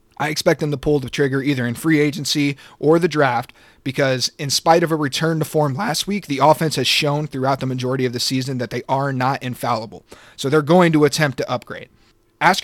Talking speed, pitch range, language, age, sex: 225 wpm, 125-155 Hz, English, 30-49, male